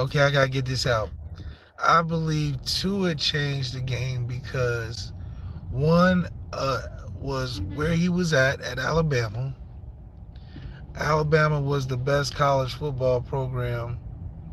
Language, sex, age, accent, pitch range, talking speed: English, male, 20-39, American, 110-145 Hz, 125 wpm